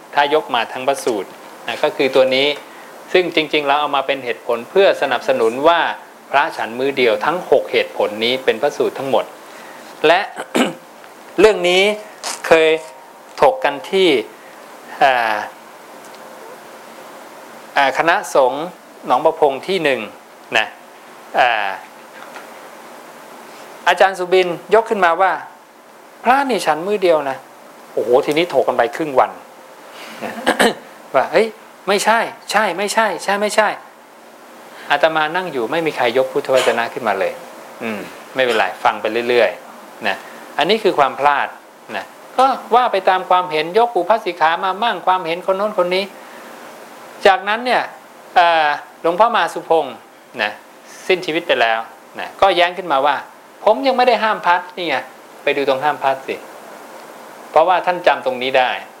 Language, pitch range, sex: English, 150-210 Hz, male